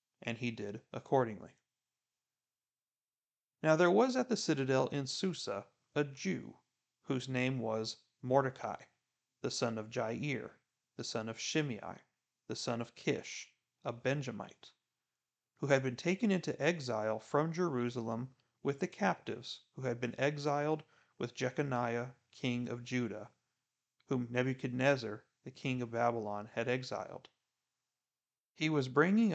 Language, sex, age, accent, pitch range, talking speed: English, male, 40-59, American, 120-140 Hz, 130 wpm